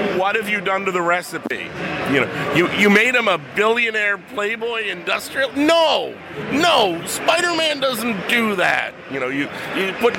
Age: 40-59